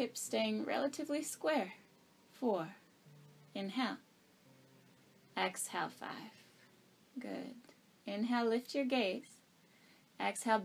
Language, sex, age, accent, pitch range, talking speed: English, female, 20-39, American, 195-275 Hz, 80 wpm